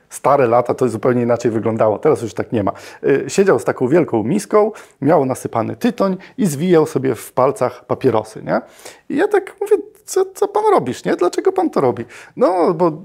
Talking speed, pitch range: 190 wpm, 165-245 Hz